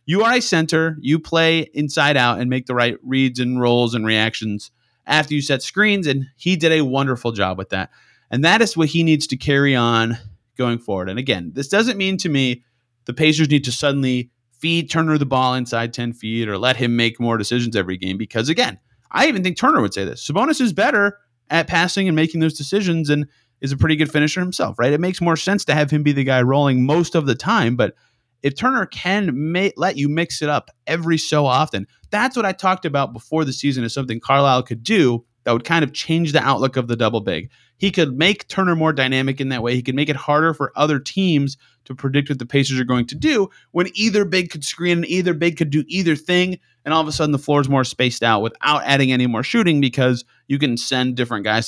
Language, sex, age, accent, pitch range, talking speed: English, male, 30-49, American, 120-165 Hz, 235 wpm